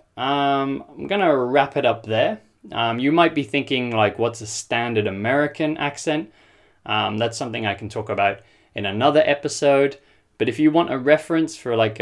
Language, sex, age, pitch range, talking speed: English, male, 20-39, 105-130 Hz, 185 wpm